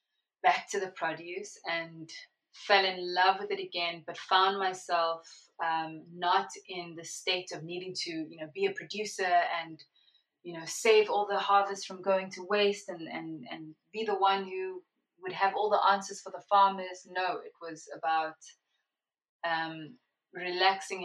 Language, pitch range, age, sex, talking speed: English, 165-200 Hz, 20-39, female, 170 wpm